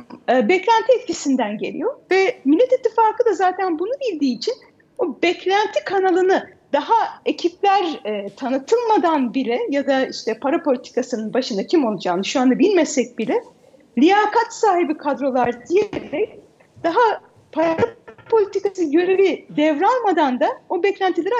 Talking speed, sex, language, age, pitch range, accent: 120 wpm, female, Turkish, 40-59, 250-375 Hz, native